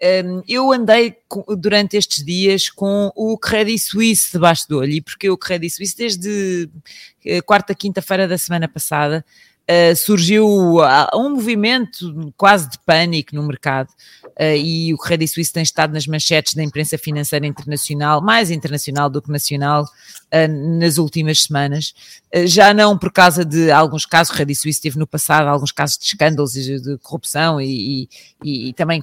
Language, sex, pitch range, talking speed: Portuguese, female, 150-190 Hz, 170 wpm